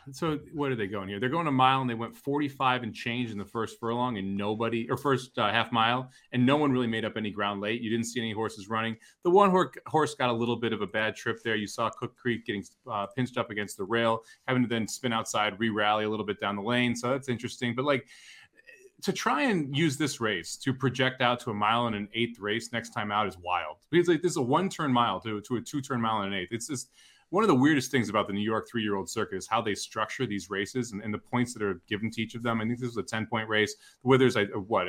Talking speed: 275 wpm